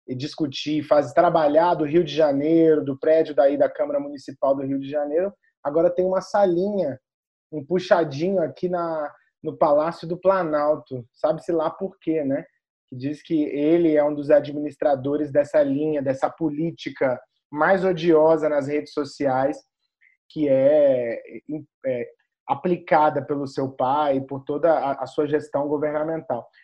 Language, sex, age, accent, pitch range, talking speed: Portuguese, male, 20-39, Brazilian, 150-190 Hz, 155 wpm